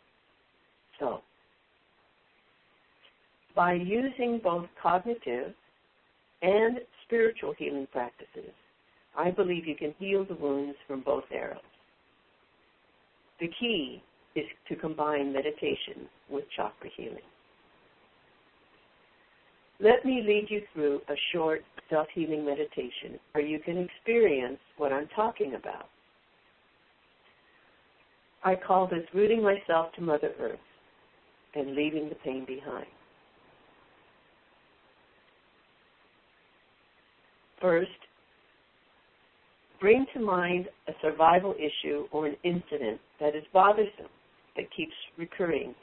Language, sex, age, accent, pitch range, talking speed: English, female, 60-79, American, 150-210 Hz, 95 wpm